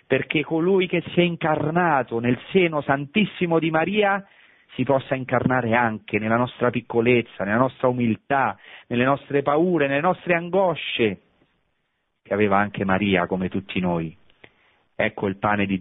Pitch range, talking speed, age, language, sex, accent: 100-135 Hz, 145 wpm, 40-59, Italian, male, native